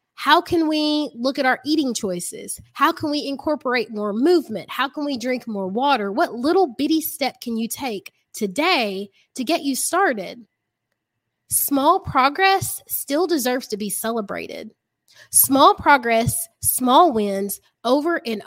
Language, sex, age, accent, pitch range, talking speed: English, female, 20-39, American, 210-295 Hz, 145 wpm